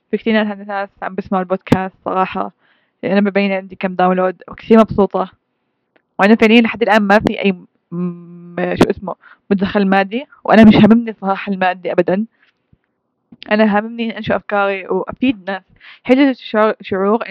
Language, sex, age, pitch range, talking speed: Arabic, female, 20-39, 185-220 Hz, 140 wpm